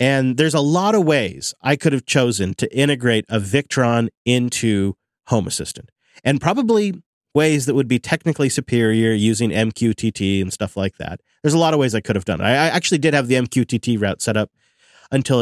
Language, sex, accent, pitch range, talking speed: English, male, American, 110-155 Hz, 200 wpm